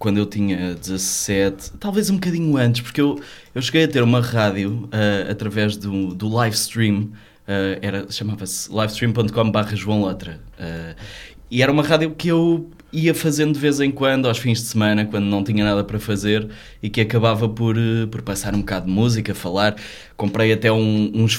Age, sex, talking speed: 20-39, male, 185 wpm